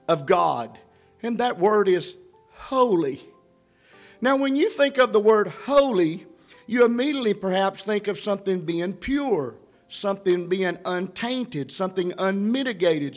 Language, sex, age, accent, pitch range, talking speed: English, male, 50-69, American, 190-275 Hz, 130 wpm